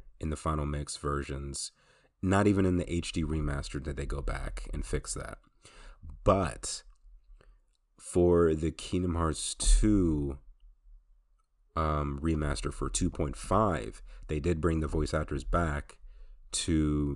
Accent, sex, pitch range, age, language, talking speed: American, male, 70-85 Hz, 30-49, English, 125 wpm